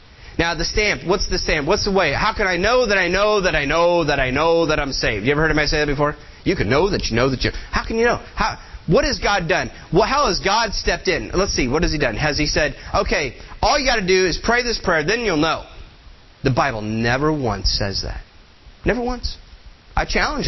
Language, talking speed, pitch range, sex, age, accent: English, 250 wpm, 115-175 Hz, male, 30-49, American